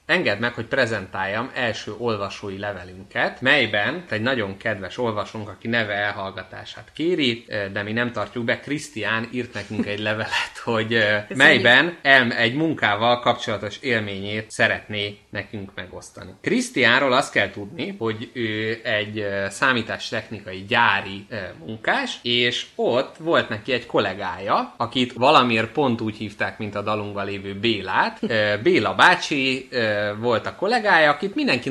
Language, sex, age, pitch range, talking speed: Hungarian, male, 20-39, 105-125 Hz, 130 wpm